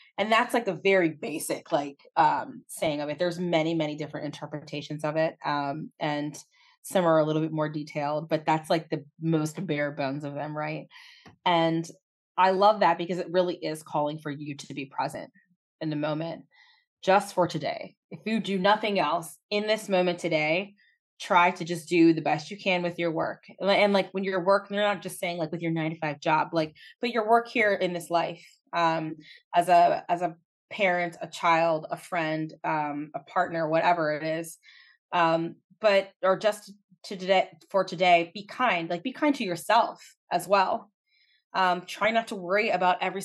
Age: 20-39